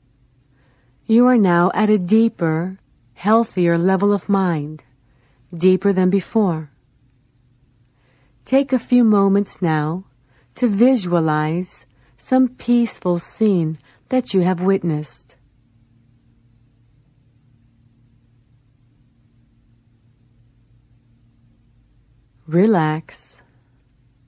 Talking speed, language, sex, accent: 70 wpm, English, female, American